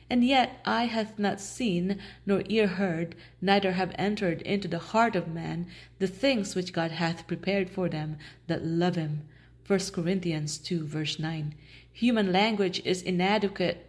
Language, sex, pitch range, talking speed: English, female, 170-195 Hz, 160 wpm